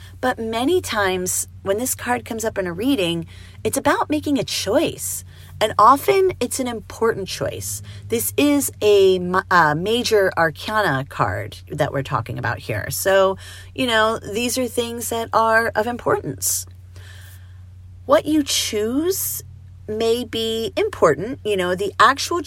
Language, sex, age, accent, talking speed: English, female, 30-49, American, 145 wpm